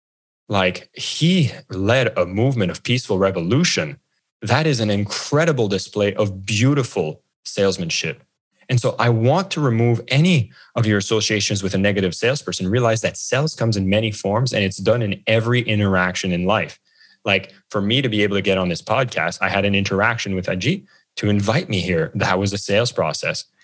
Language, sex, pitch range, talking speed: English, male, 95-125 Hz, 180 wpm